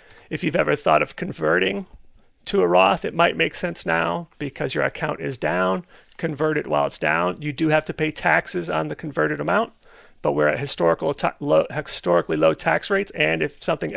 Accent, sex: American, male